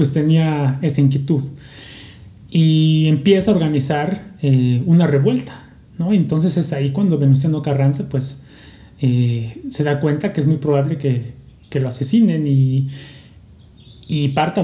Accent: Mexican